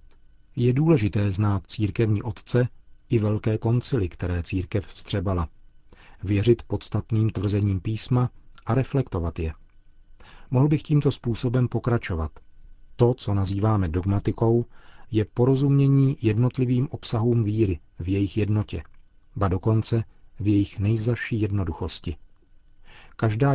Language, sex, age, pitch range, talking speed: Czech, male, 40-59, 100-120 Hz, 105 wpm